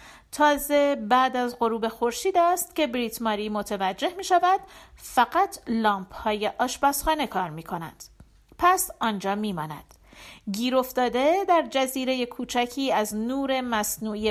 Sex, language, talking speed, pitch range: female, Persian, 120 wpm, 210-285 Hz